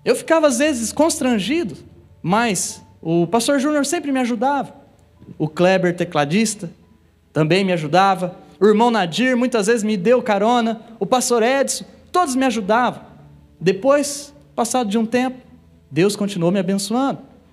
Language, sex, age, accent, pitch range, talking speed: Portuguese, male, 20-39, Brazilian, 185-260 Hz, 140 wpm